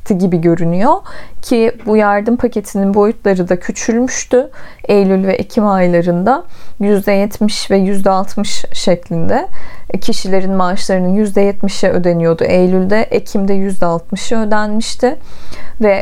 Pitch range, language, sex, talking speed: 185-225 Hz, Turkish, female, 100 wpm